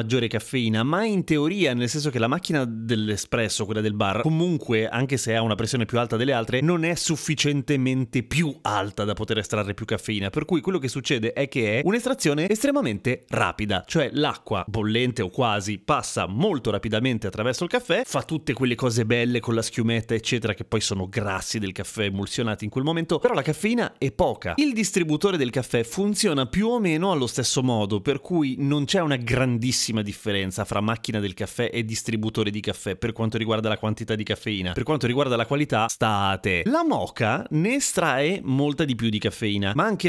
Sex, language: male, Italian